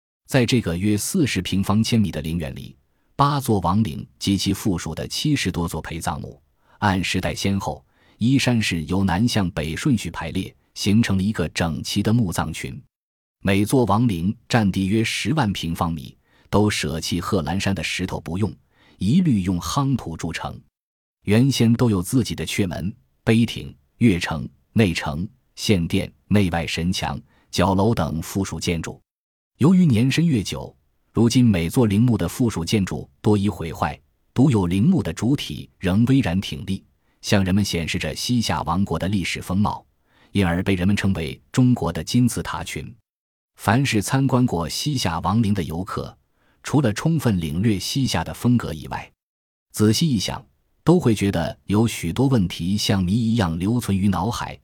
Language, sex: Chinese, male